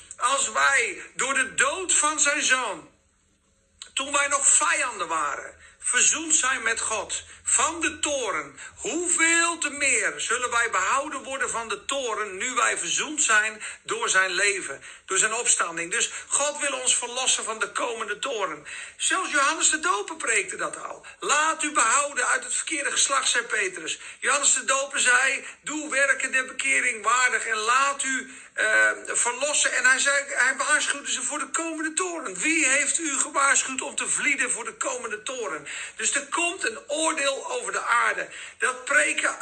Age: 50-69